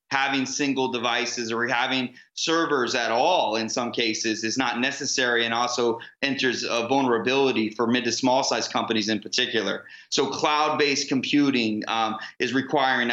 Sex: male